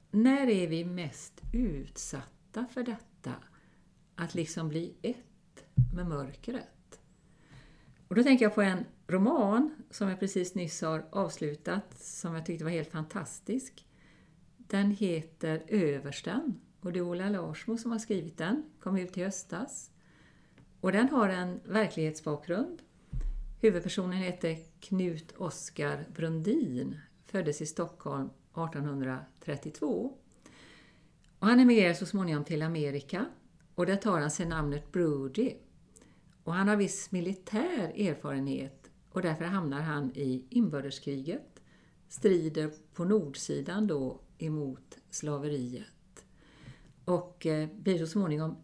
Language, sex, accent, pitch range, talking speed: Swedish, female, native, 155-200 Hz, 120 wpm